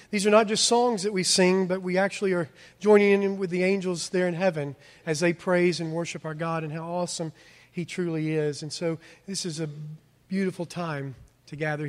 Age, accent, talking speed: 40-59, American, 210 wpm